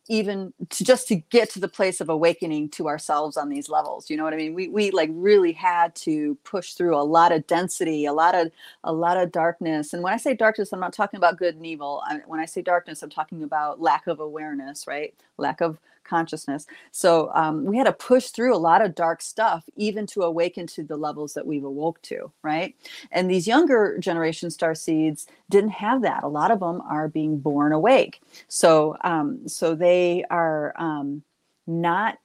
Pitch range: 165-230 Hz